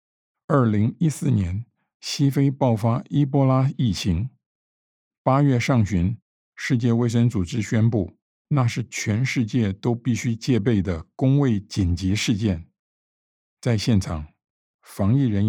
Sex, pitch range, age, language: male, 95-130 Hz, 50-69, Chinese